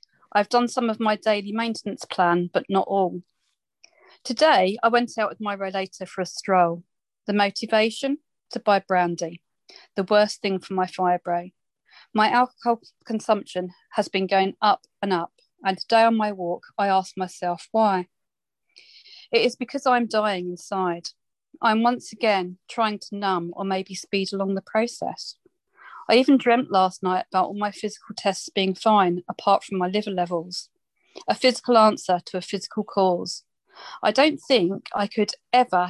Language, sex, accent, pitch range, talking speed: English, female, British, 185-230 Hz, 165 wpm